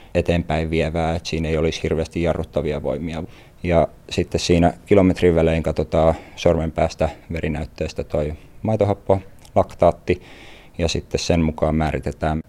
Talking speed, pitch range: 120 wpm, 80-85 Hz